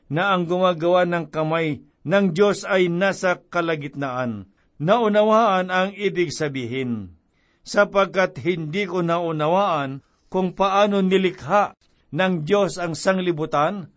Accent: native